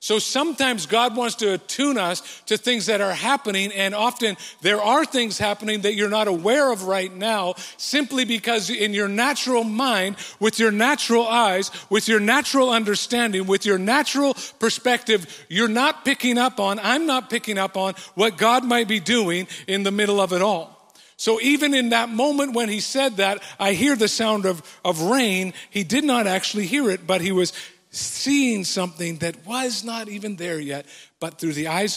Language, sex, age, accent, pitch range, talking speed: English, male, 50-69, American, 185-240 Hz, 190 wpm